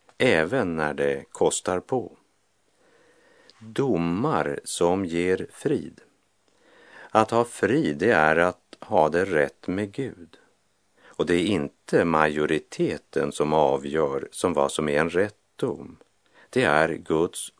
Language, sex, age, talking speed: Swedish, male, 50-69, 125 wpm